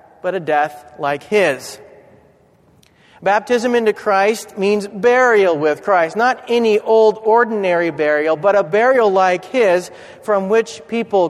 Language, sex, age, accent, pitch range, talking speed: German, male, 40-59, American, 155-210 Hz, 135 wpm